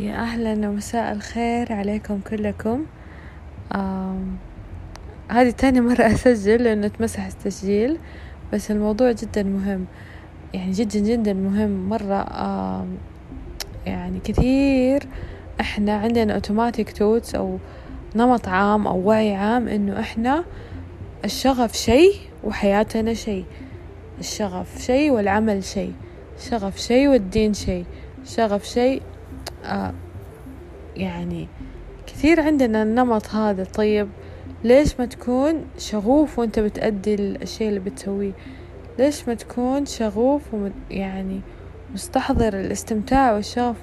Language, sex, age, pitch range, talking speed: Arabic, female, 20-39, 190-245 Hz, 105 wpm